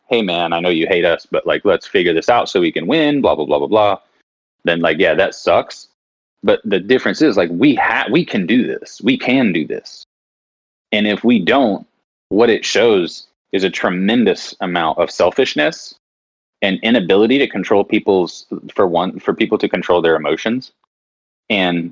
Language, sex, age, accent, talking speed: English, male, 30-49, American, 190 wpm